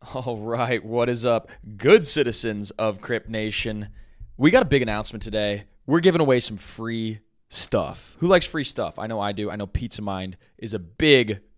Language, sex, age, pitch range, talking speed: English, male, 20-39, 110-145 Hz, 190 wpm